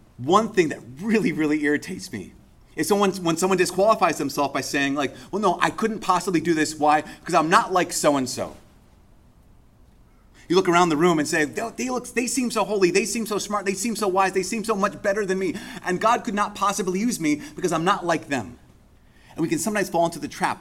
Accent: American